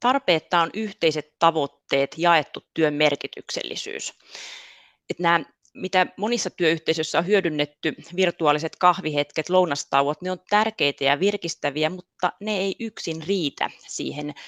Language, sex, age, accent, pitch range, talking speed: Finnish, female, 30-49, native, 150-190 Hz, 115 wpm